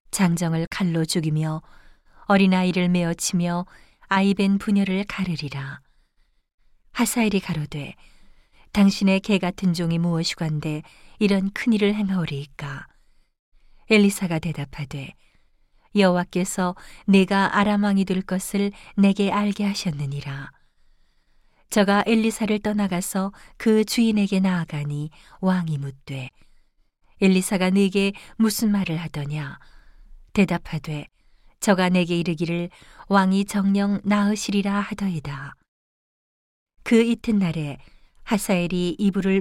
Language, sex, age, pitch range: Korean, female, 40-59, 160-200 Hz